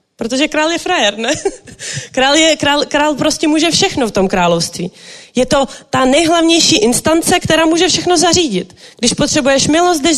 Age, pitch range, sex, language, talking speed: 30-49, 255-310 Hz, female, Czech, 155 wpm